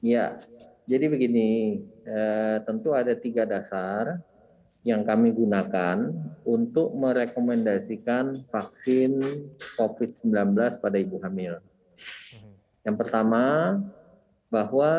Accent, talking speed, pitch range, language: native, 85 wpm, 105-145 Hz, Indonesian